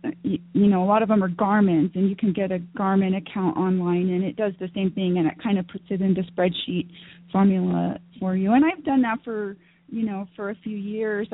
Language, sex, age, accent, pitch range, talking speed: English, female, 30-49, American, 180-220 Hz, 240 wpm